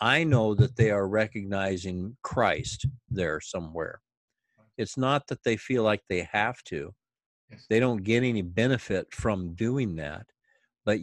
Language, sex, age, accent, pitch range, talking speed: English, male, 50-69, American, 90-110 Hz, 145 wpm